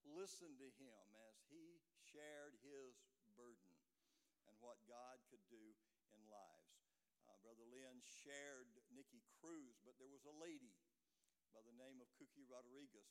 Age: 60-79